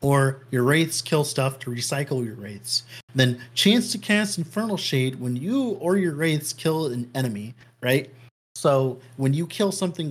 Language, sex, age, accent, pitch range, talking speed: English, male, 30-49, American, 120-150 Hz, 170 wpm